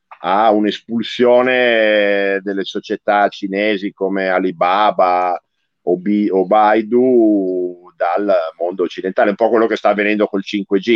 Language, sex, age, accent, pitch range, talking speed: Italian, male, 50-69, native, 90-105 Hz, 115 wpm